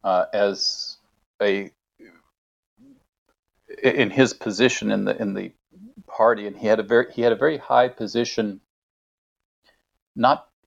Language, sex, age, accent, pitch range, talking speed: English, male, 50-69, American, 95-120 Hz, 130 wpm